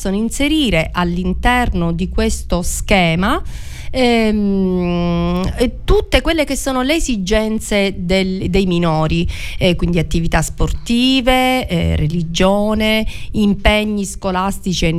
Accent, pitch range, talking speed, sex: native, 185-260 Hz, 95 wpm, female